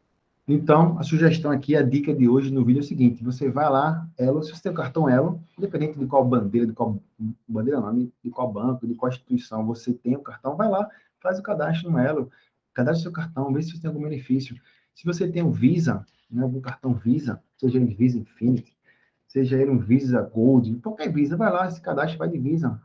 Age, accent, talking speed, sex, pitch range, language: 20-39, Brazilian, 220 wpm, male, 125-160 Hz, Portuguese